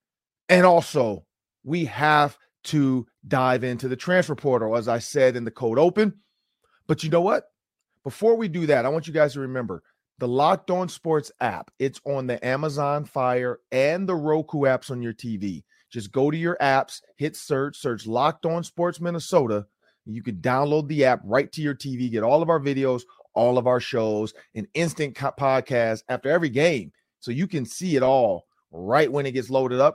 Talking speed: 190 wpm